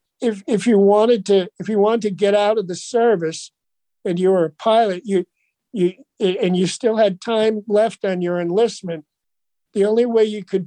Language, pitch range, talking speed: English, 180-210 Hz, 195 wpm